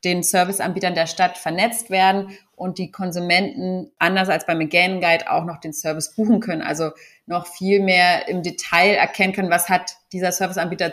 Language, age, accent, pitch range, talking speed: German, 30-49, German, 165-190 Hz, 170 wpm